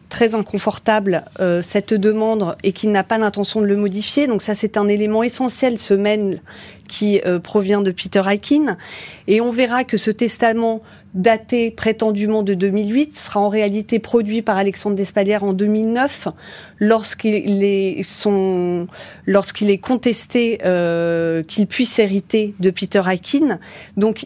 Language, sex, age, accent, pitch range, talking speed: French, female, 30-49, French, 205-235 Hz, 150 wpm